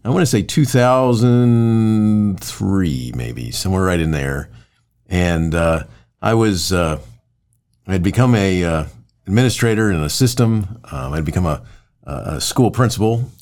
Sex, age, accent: male, 50-69, American